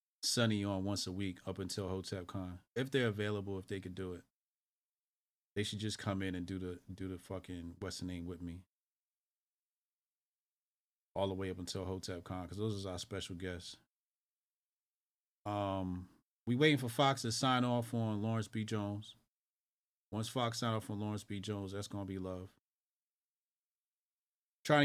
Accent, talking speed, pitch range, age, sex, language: American, 165 wpm, 95-115 Hz, 30-49, male, English